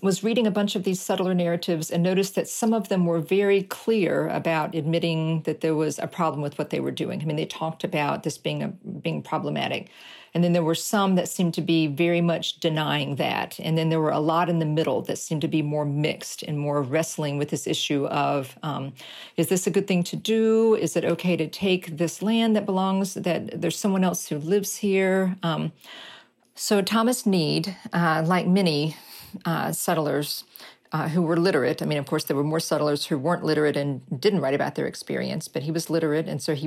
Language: English